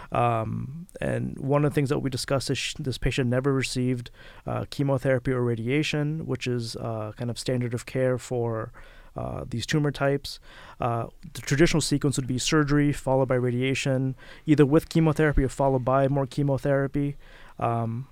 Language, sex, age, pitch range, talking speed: English, male, 30-49, 125-145 Hz, 165 wpm